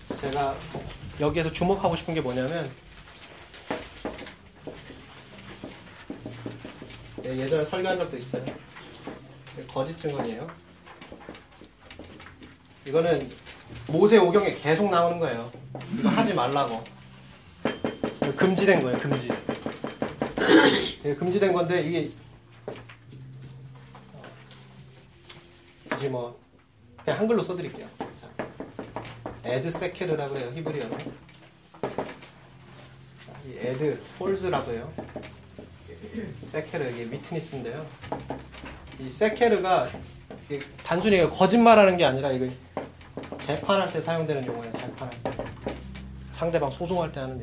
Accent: native